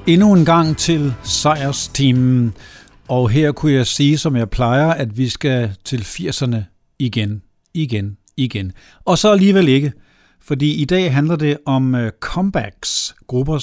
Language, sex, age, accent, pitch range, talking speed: Danish, male, 60-79, native, 120-155 Hz, 140 wpm